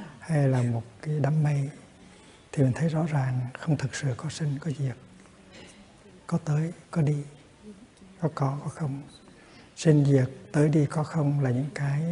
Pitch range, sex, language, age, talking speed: 130-155 Hz, male, Vietnamese, 60-79, 175 wpm